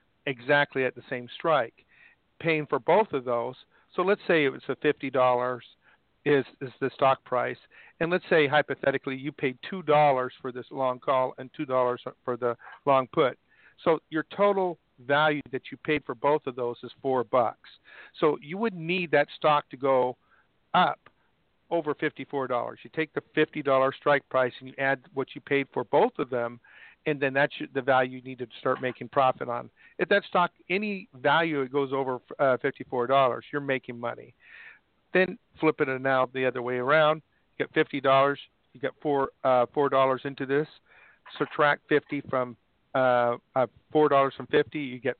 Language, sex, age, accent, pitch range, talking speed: English, male, 50-69, American, 130-150 Hz, 180 wpm